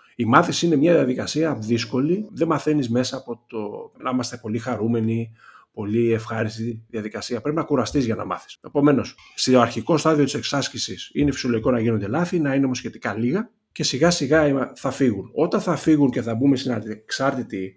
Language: Greek